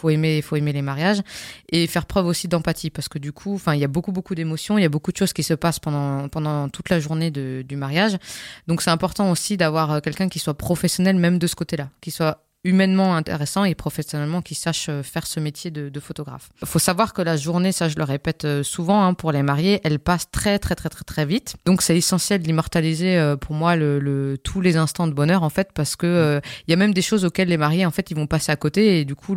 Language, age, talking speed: French, 20-39, 260 wpm